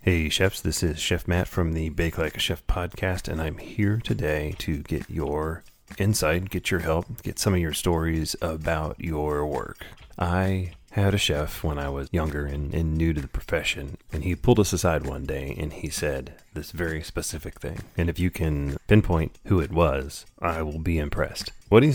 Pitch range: 75-90 Hz